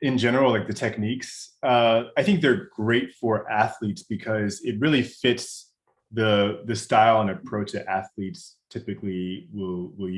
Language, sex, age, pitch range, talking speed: English, male, 20-39, 100-115 Hz, 155 wpm